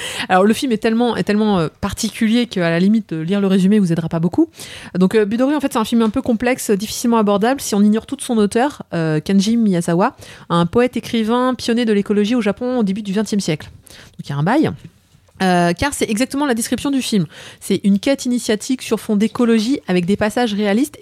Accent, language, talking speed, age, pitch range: French, French, 230 wpm, 30-49, 180-235 Hz